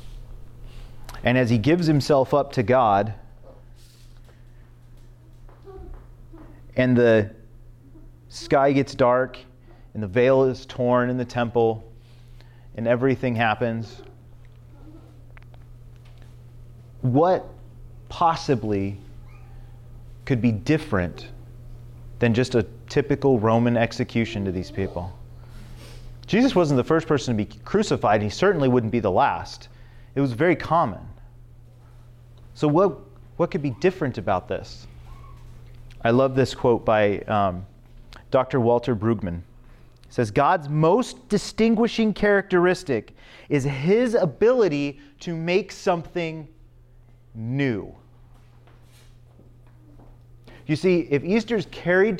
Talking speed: 105 wpm